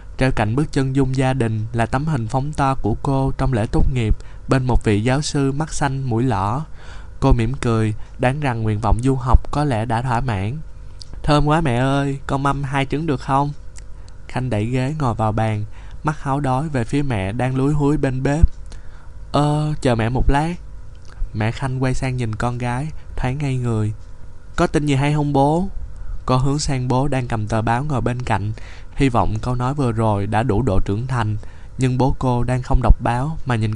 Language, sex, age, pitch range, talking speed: Vietnamese, male, 20-39, 105-135 Hz, 215 wpm